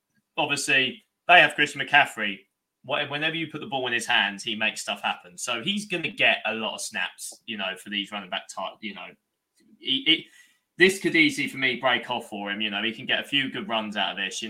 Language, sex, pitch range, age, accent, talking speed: English, male, 105-130 Hz, 20-39, British, 235 wpm